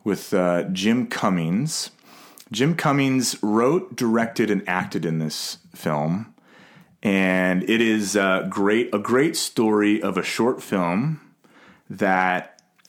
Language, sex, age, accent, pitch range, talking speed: English, male, 30-49, American, 90-115 Hz, 120 wpm